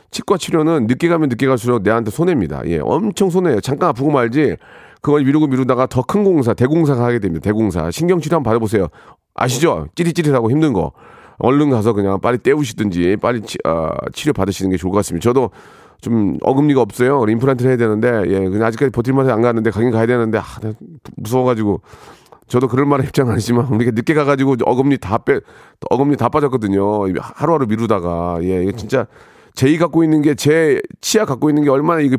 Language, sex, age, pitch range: Korean, male, 40-59, 110-150 Hz